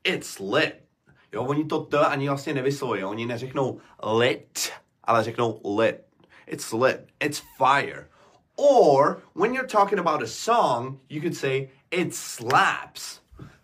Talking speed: 135 wpm